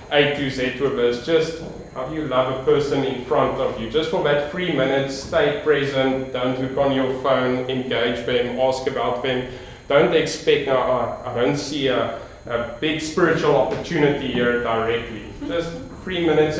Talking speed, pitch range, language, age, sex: 180 wpm, 115-145 Hz, English, 30-49, male